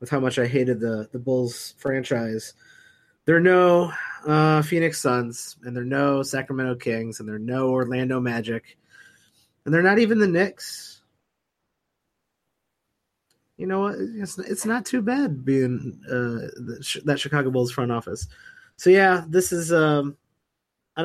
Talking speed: 150 wpm